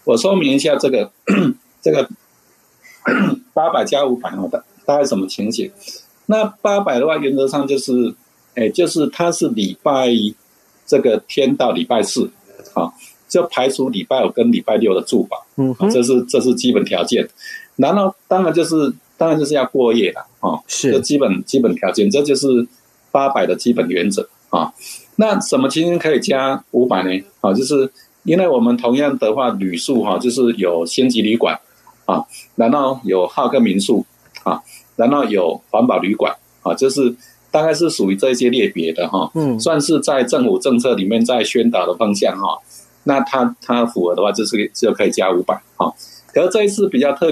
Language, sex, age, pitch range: Chinese, male, 50-69, 115-170 Hz